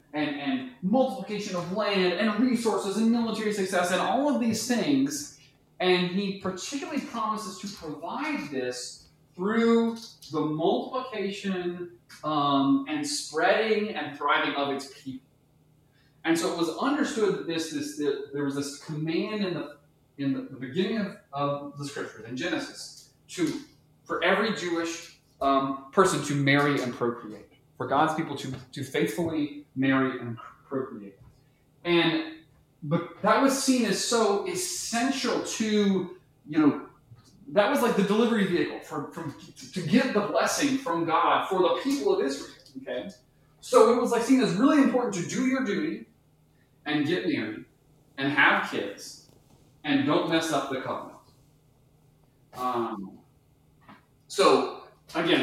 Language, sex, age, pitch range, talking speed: English, male, 20-39, 145-220 Hz, 145 wpm